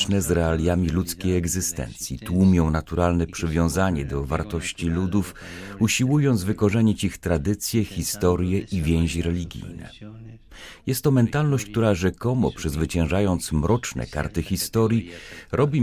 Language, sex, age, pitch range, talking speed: Polish, male, 40-59, 85-115 Hz, 105 wpm